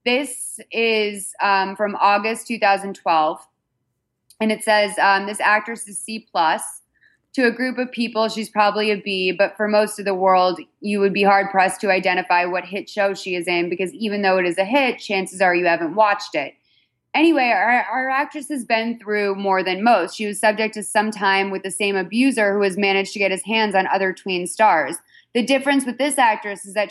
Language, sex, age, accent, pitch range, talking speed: English, female, 20-39, American, 190-220 Hz, 205 wpm